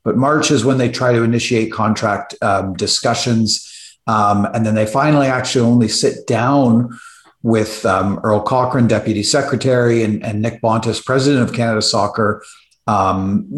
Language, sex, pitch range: English, male, 110-130 Hz